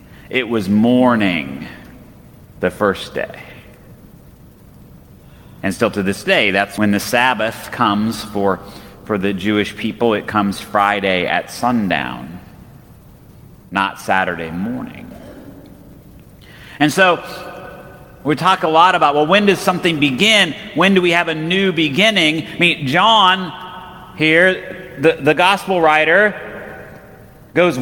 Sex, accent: male, American